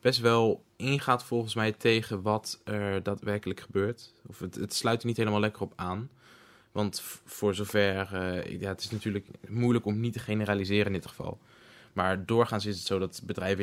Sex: male